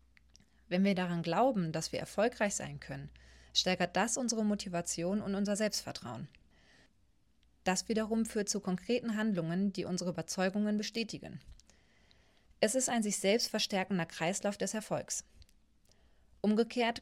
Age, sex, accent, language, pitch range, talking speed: 30-49, female, German, German, 175-215 Hz, 125 wpm